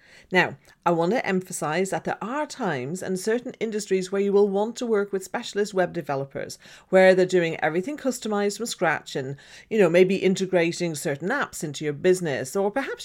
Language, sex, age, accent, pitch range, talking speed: English, female, 40-59, British, 170-220 Hz, 190 wpm